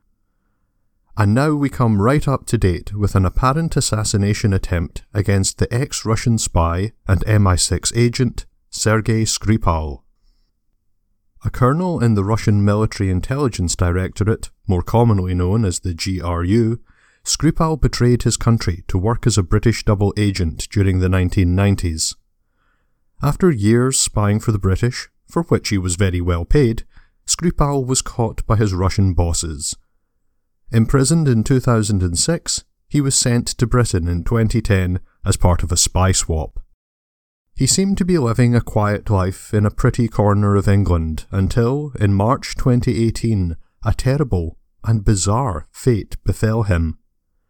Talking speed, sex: 140 wpm, male